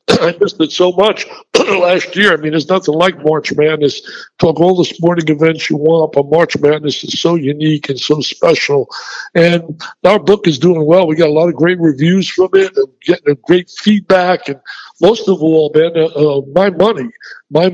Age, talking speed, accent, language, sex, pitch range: 60-79, 200 wpm, American, English, male, 160-200 Hz